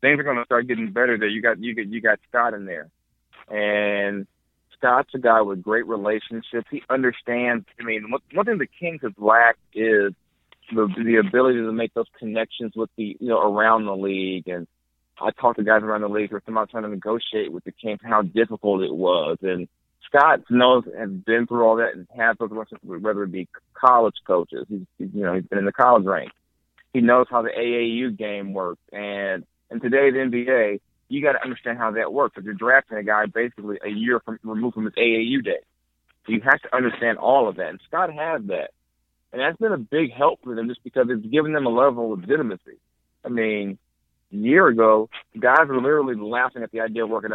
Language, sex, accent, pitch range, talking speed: English, male, American, 105-120 Hz, 220 wpm